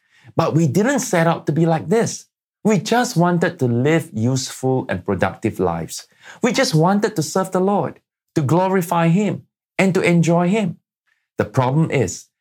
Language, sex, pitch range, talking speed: English, male, 115-175 Hz, 170 wpm